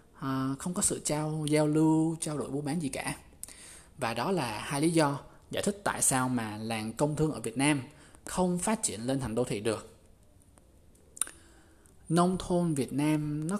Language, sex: Vietnamese, male